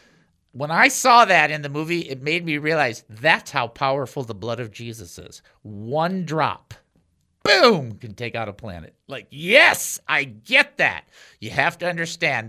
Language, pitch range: English, 125-205 Hz